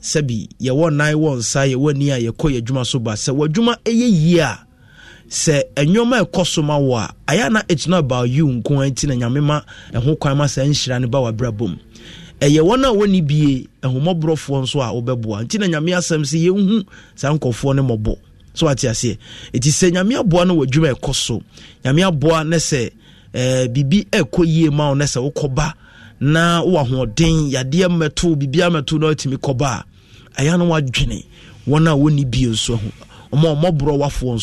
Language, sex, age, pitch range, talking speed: English, male, 30-49, 120-155 Hz, 180 wpm